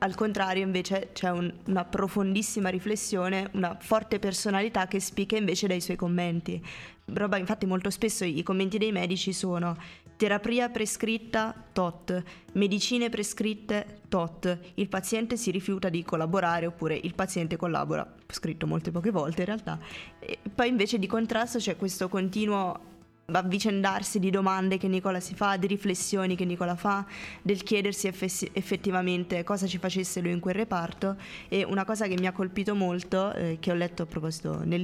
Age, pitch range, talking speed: 20-39, 175-200 Hz, 160 wpm